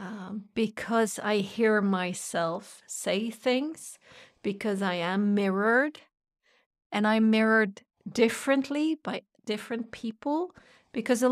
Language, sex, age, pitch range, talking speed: English, female, 50-69, 215-265 Hz, 105 wpm